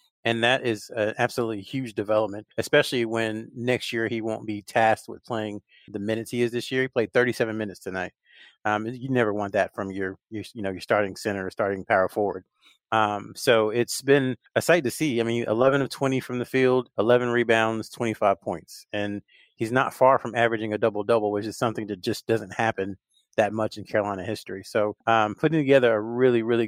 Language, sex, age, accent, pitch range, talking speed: English, male, 30-49, American, 110-120 Hz, 205 wpm